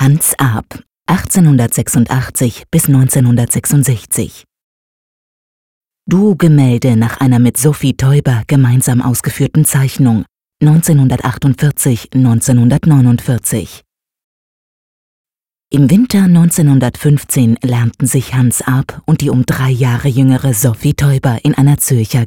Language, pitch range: German, 125-145 Hz